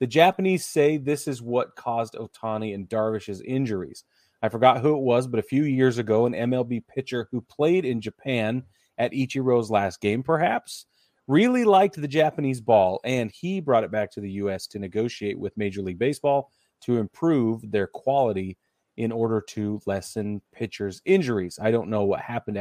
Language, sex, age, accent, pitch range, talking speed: English, male, 30-49, American, 105-130 Hz, 180 wpm